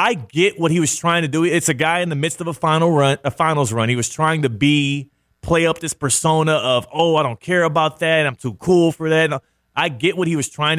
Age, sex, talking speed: 30-49, male, 265 wpm